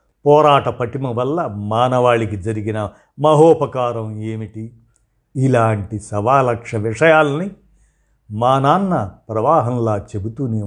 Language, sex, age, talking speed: Telugu, male, 50-69, 80 wpm